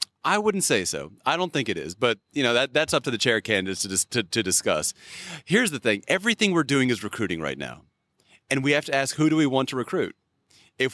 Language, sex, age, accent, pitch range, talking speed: English, male, 30-49, American, 120-140 Hz, 250 wpm